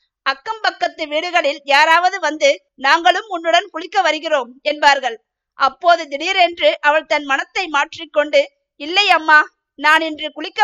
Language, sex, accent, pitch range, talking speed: Tamil, female, native, 290-355 Hz, 120 wpm